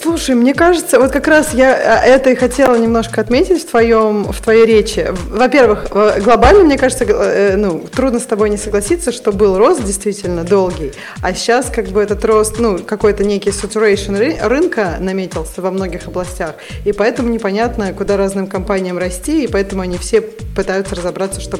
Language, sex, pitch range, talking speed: Russian, female, 210-255 Hz, 170 wpm